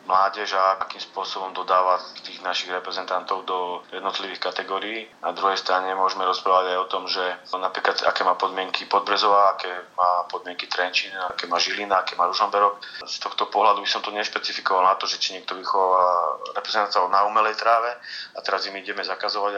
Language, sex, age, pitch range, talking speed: Slovak, male, 30-49, 95-105 Hz, 175 wpm